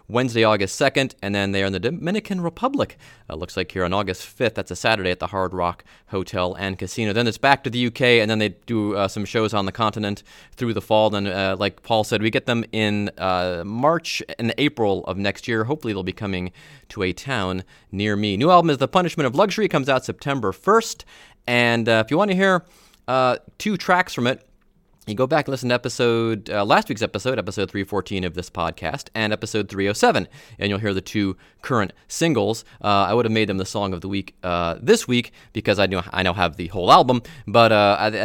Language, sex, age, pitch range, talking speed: English, male, 30-49, 100-135 Hz, 240 wpm